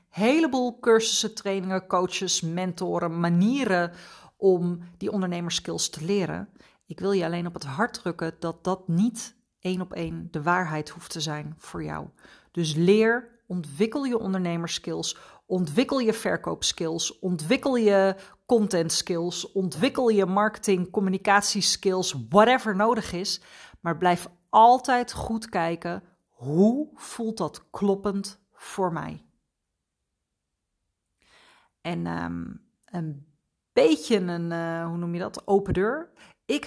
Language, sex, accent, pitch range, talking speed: Dutch, female, Dutch, 170-210 Hz, 120 wpm